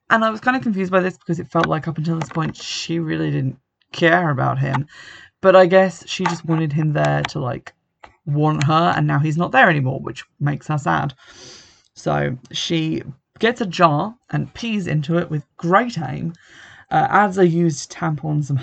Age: 20-39